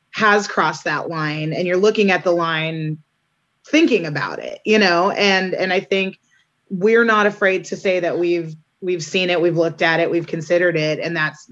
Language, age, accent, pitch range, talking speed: English, 30-49, American, 165-190 Hz, 200 wpm